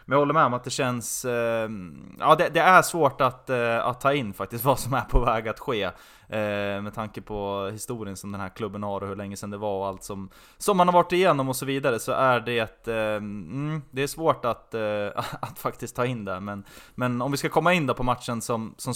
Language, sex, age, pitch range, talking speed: Swedish, male, 20-39, 105-135 Hz, 255 wpm